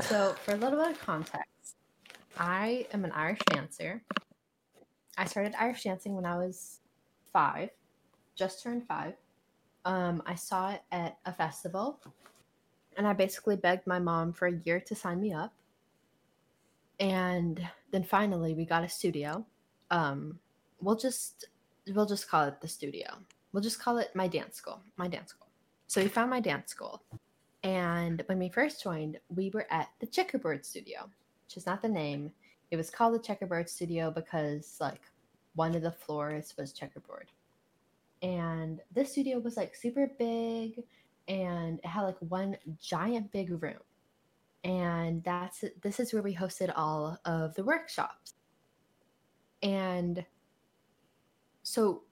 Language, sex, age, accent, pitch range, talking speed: English, female, 10-29, American, 170-215 Hz, 155 wpm